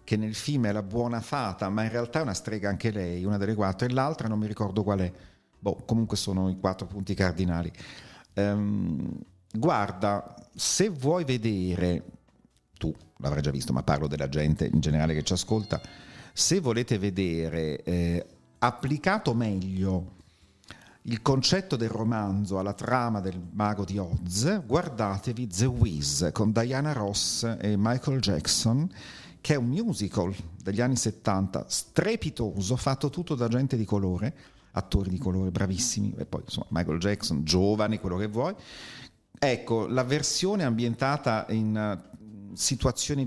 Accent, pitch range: native, 95-130 Hz